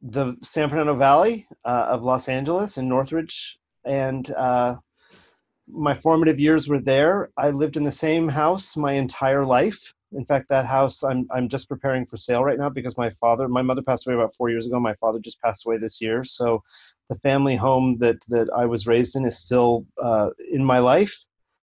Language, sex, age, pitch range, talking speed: English, male, 30-49, 125-150 Hz, 200 wpm